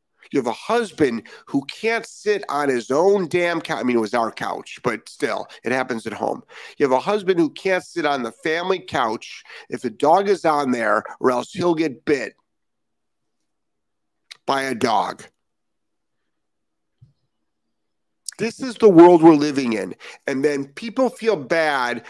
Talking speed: 165 wpm